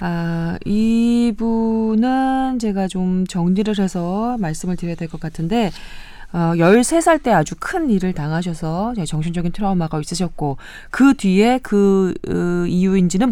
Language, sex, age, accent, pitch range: Korean, female, 20-39, native, 155-210 Hz